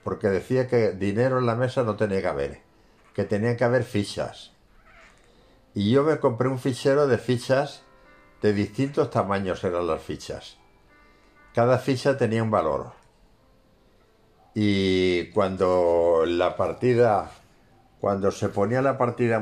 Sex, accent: male, Spanish